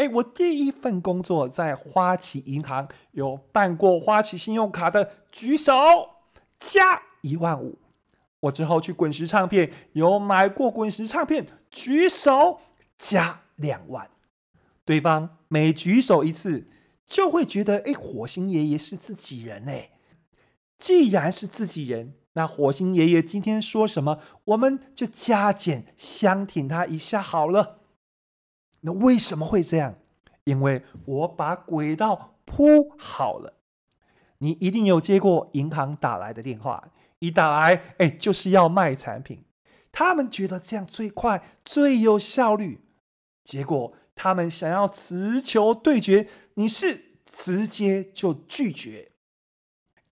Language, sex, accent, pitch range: Chinese, male, native, 155-215 Hz